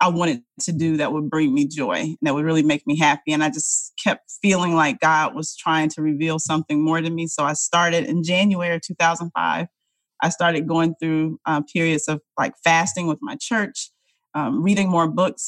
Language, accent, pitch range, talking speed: English, American, 160-185 Hz, 205 wpm